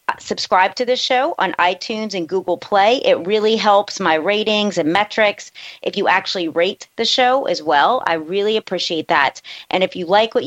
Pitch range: 175-215 Hz